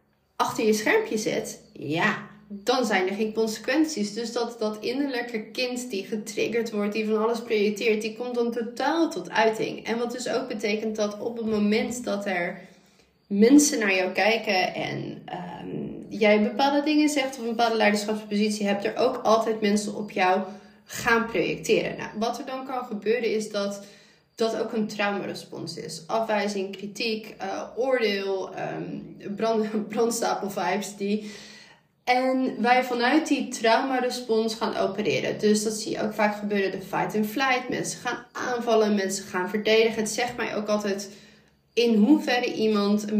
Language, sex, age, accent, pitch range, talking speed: Dutch, female, 20-39, Dutch, 200-230 Hz, 165 wpm